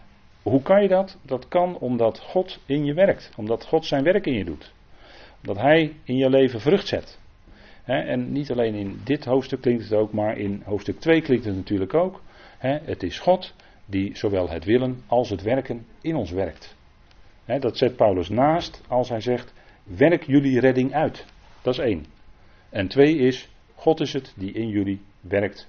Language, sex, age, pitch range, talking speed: Dutch, male, 40-59, 95-130 Hz, 185 wpm